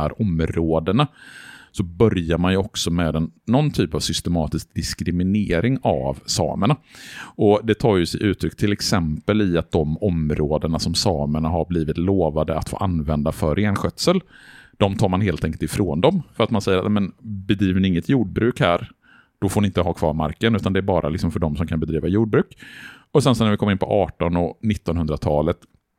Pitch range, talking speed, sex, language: 80-105 Hz, 190 wpm, male, Swedish